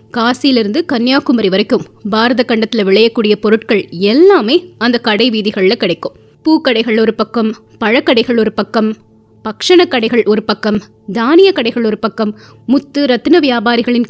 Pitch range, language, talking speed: 215-285 Hz, Tamil, 125 wpm